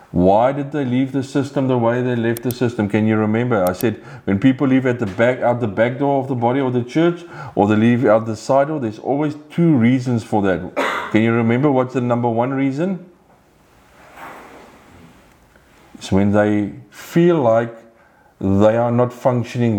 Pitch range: 100-135 Hz